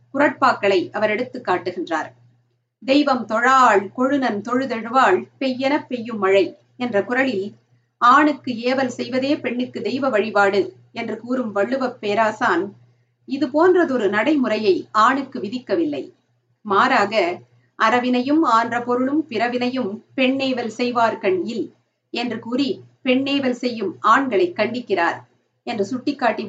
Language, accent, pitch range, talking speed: Tamil, native, 195-265 Hz, 95 wpm